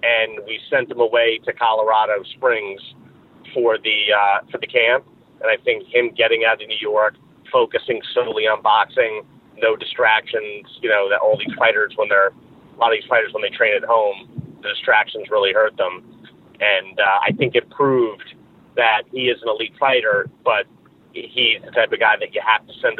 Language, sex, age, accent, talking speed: English, male, 30-49, American, 195 wpm